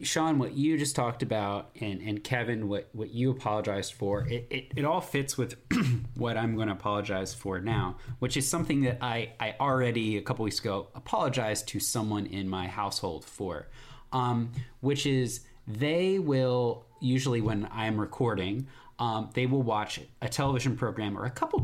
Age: 30-49